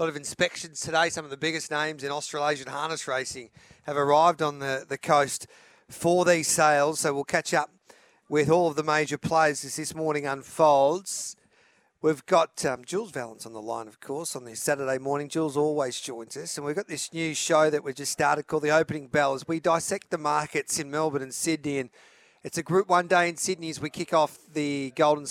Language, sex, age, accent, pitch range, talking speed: English, male, 40-59, Australian, 145-165 Hz, 215 wpm